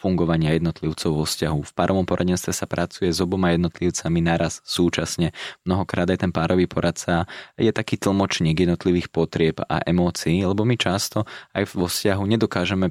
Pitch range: 85-100 Hz